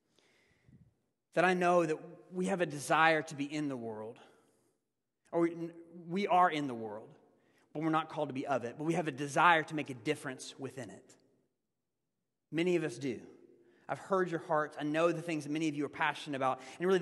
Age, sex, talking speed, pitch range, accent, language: 30-49, male, 210 wpm, 150-220 Hz, American, English